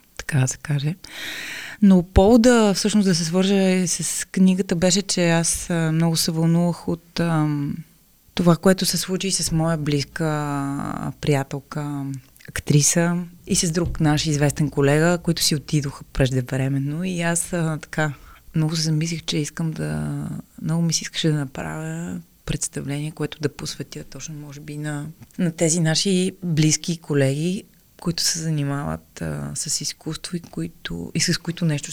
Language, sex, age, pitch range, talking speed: Bulgarian, female, 20-39, 140-170 Hz, 150 wpm